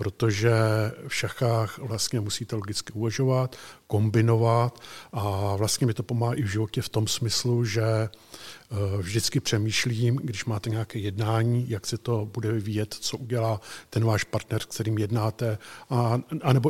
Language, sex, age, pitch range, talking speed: Czech, male, 50-69, 110-120 Hz, 140 wpm